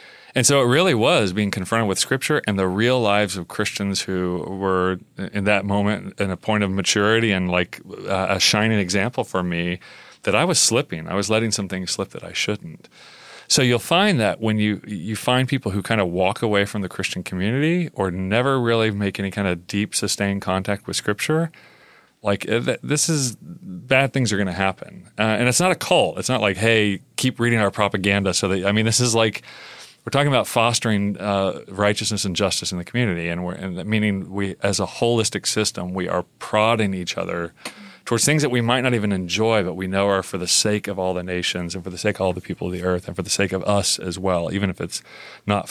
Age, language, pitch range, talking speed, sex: 30-49, English, 95-115 Hz, 230 wpm, male